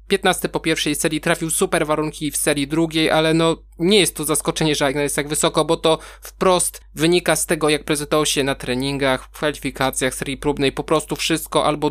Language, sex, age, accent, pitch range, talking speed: Polish, male, 20-39, native, 150-165 Hz, 195 wpm